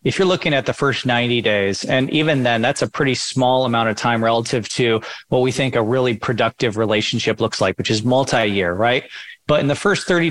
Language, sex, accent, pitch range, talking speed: English, male, American, 115-145 Hz, 220 wpm